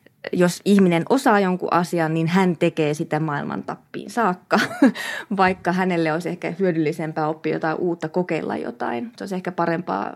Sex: female